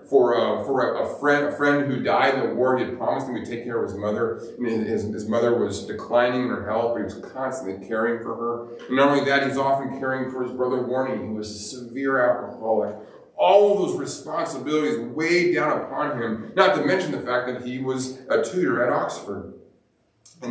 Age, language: 30-49, English